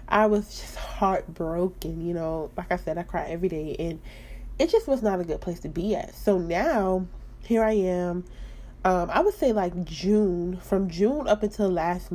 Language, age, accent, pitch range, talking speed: English, 20-39, American, 170-195 Hz, 200 wpm